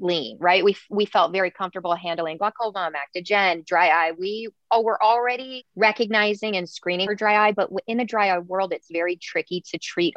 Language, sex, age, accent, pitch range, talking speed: English, female, 30-49, American, 165-210 Hz, 195 wpm